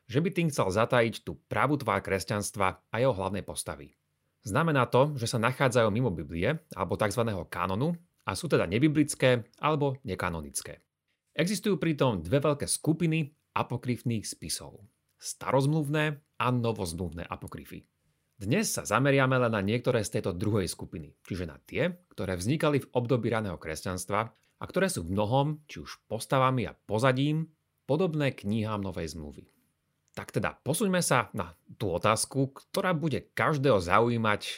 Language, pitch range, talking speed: Slovak, 100-140 Hz, 145 wpm